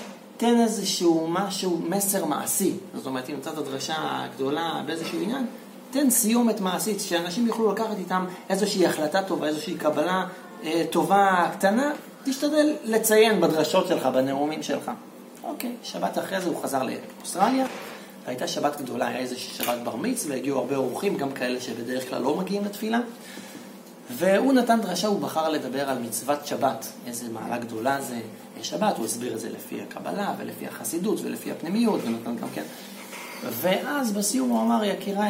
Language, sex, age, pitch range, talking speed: Hebrew, male, 30-49, 155-235 Hz, 155 wpm